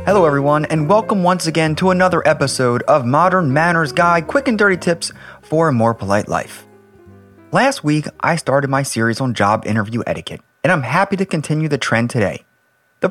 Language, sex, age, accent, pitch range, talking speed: English, male, 30-49, American, 120-170 Hz, 190 wpm